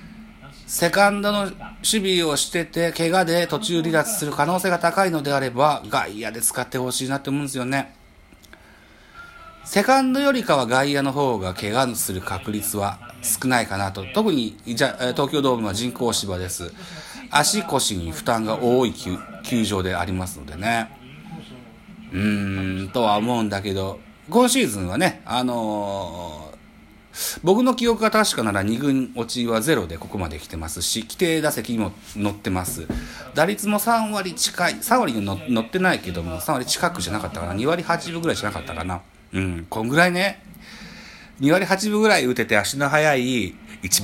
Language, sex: Japanese, male